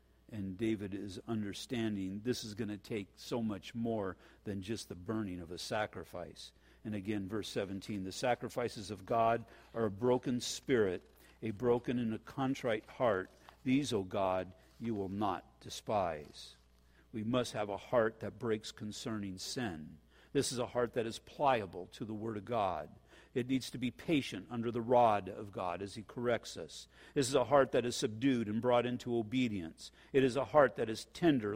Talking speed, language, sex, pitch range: 185 wpm, English, male, 105-130 Hz